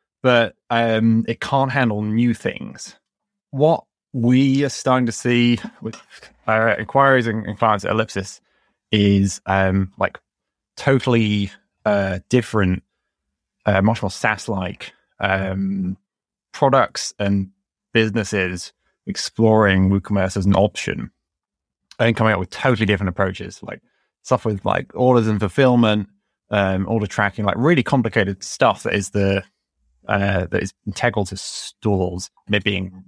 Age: 20-39